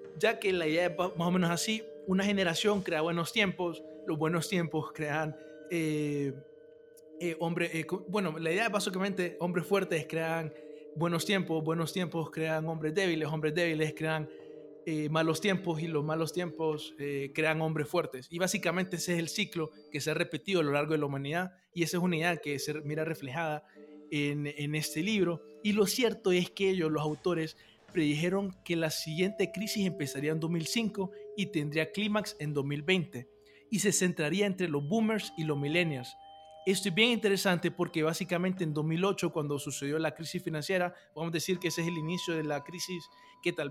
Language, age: Spanish, 20-39